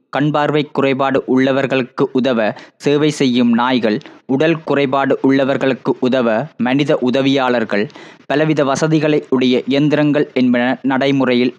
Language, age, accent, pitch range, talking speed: Tamil, 20-39, native, 130-145 Hz, 100 wpm